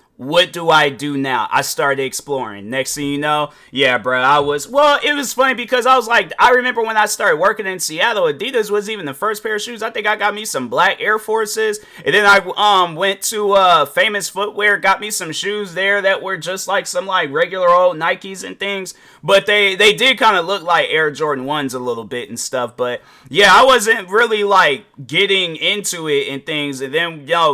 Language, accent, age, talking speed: English, American, 30-49, 225 wpm